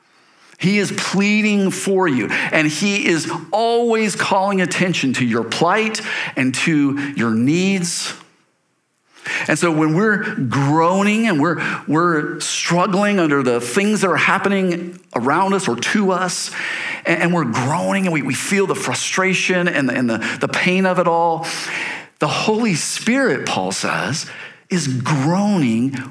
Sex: male